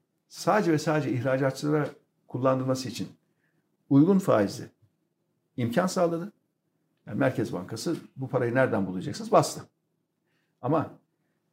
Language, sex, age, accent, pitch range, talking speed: Turkish, male, 60-79, native, 140-190 Hz, 100 wpm